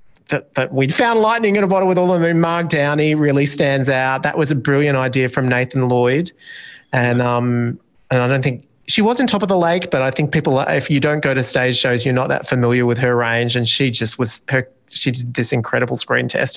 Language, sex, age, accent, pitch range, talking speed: English, male, 30-49, Australian, 120-145 Hz, 245 wpm